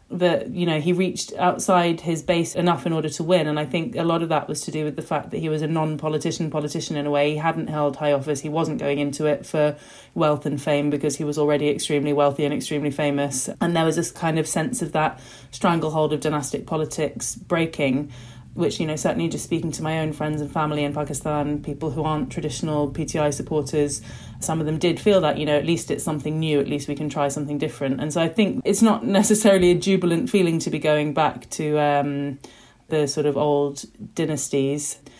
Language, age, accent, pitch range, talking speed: English, 30-49, British, 145-165 Hz, 225 wpm